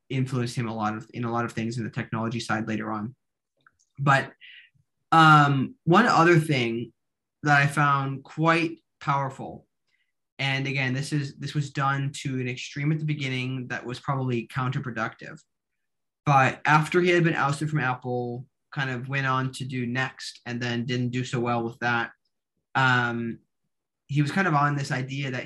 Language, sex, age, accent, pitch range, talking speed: English, male, 20-39, American, 125-145 Hz, 175 wpm